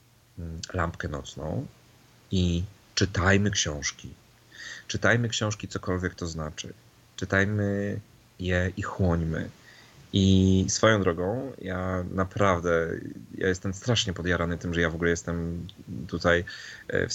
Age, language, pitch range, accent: 30-49, Polish, 85-105 Hz, native